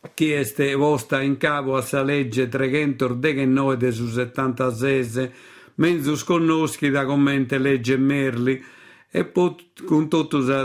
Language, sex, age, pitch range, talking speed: Italian, male, 50-69, 130-150 Hz, 120 wpm